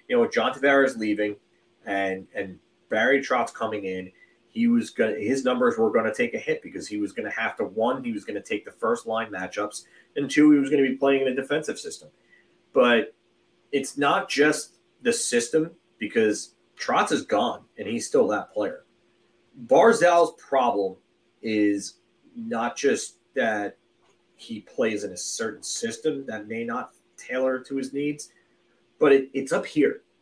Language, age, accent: English, 30-49, American